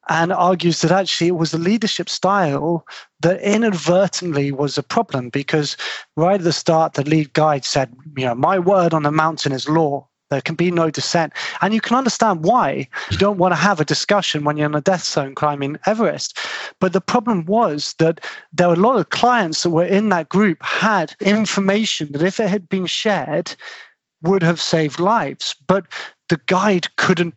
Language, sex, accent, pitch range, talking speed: English, male, British, 155-190 Hz, 195 wpm